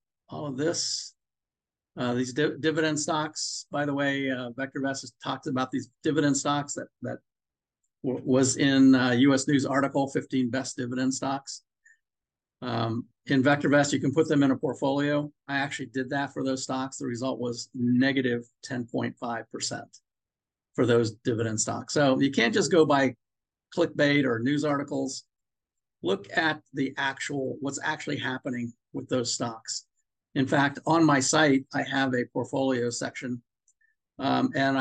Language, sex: English, male